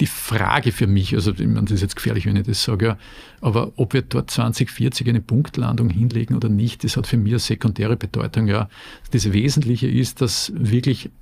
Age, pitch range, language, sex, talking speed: 50-69, 110-125 Hz, German, male, 200 wpm